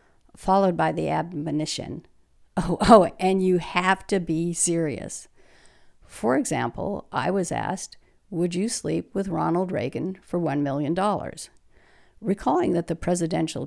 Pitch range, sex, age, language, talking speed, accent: 150-180 Hz, female, 50-69, English, 130 wpm, American